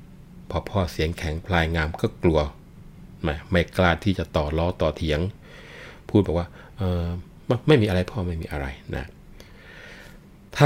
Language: Thai